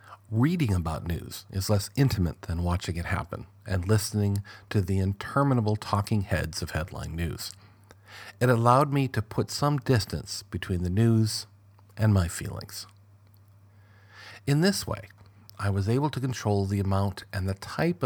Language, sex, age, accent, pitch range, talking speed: English, male, 50-69, American, 95-110 Hz, 155 wpm